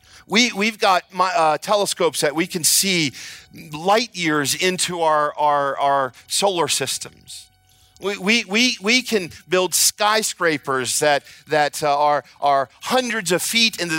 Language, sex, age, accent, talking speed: English, male, 40-59, American, 140 wpm